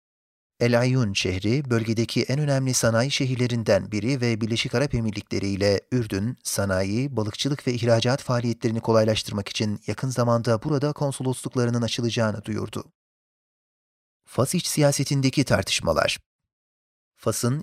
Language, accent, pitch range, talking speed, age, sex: Turkish, native, 110-130 Hz, 110 wpm, 40-59, male